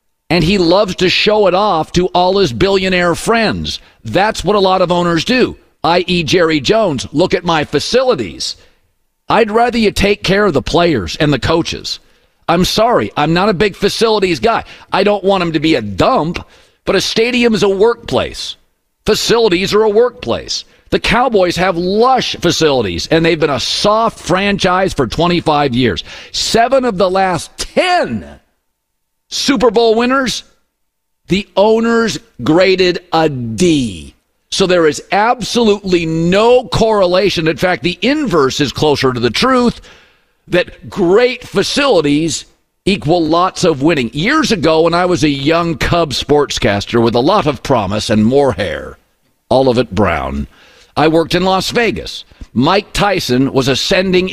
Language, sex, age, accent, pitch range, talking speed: English, male, 50-69, American, 155-210 Hz, 155 wpm